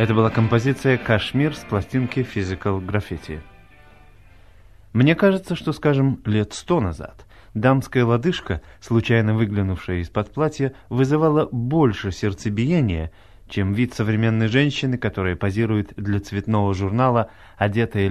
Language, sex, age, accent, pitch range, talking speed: Russian, male, 30-49, native, 100-130 Hz, 115 wpm